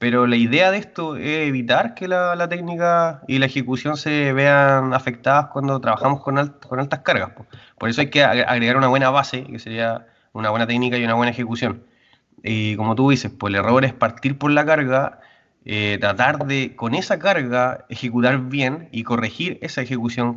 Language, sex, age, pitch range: Spanish, male, 20-39, 115-130 Hz